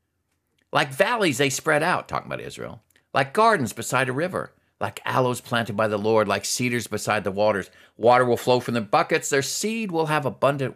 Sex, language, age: male, English, 50-69